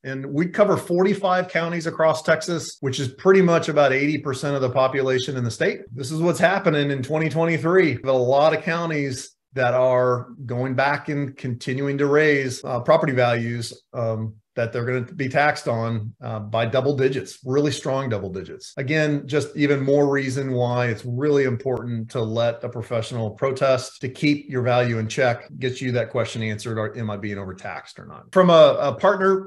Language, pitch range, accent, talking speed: English, 125-155 Hz, American, 190 wpm